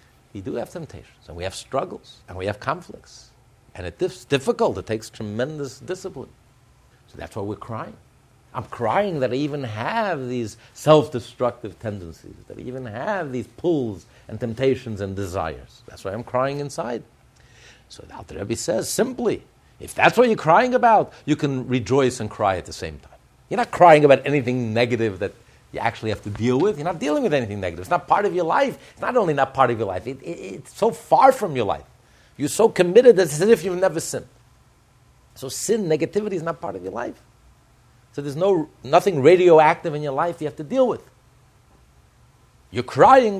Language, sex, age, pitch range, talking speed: English, male, 50-69, 120-180 Hz, 200 wpm